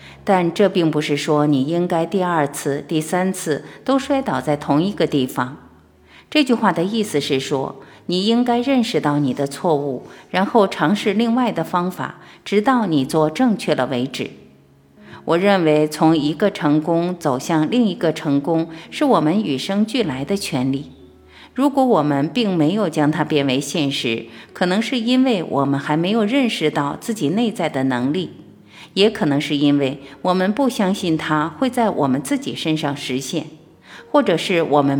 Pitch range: 145-210 Hz